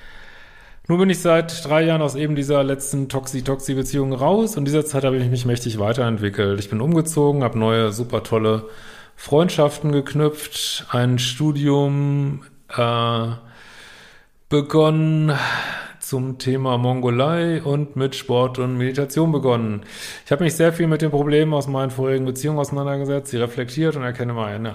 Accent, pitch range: German, 120-150 Hz